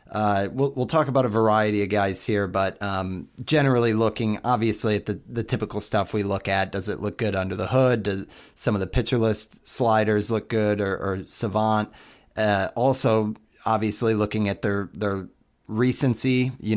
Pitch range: 100-120 Hz